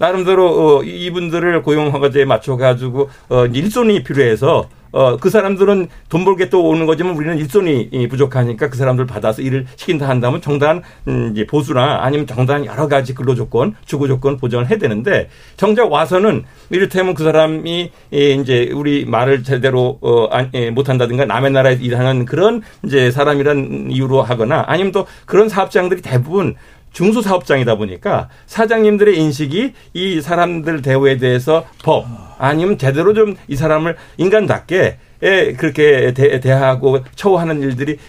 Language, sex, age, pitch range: Korean, male, 50-69, 130-180 Hz